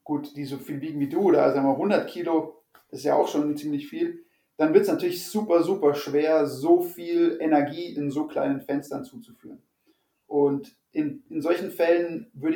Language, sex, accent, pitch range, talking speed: German, male, German, 145-170 Hz, 190 wpm